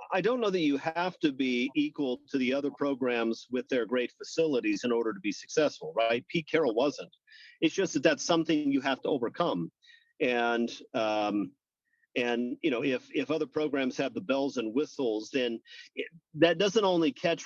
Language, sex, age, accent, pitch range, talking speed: English, male, 40-59, American, 125-170 Hz, 185 wpm